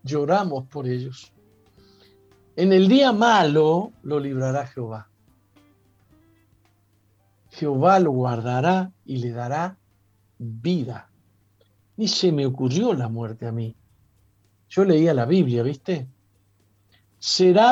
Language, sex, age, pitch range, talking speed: Spanish, male, 60-79, 110-180 Hz, 105 wpm